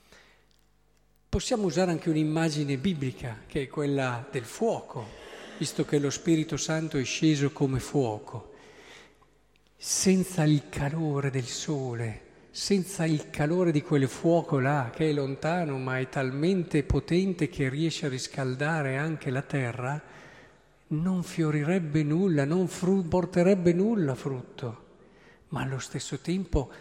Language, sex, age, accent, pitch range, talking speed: Italian, male, 50-69, native, 145-200 Hz, 125 wpm